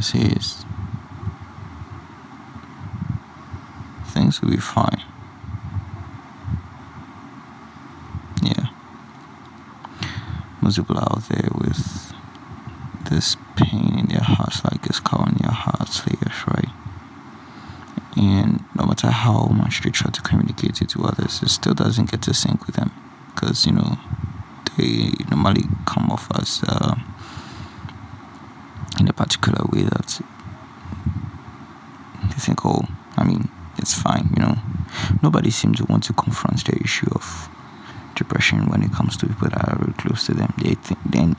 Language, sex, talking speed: English, male, 135 wpm